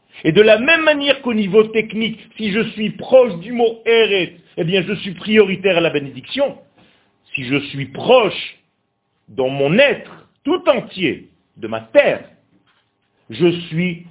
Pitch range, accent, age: 160-235 Hz, French, 50-69